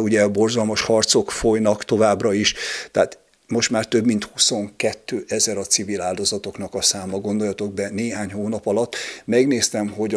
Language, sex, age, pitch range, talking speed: Hungarian, male, 50-69, 100-110 Hz, 150 wpm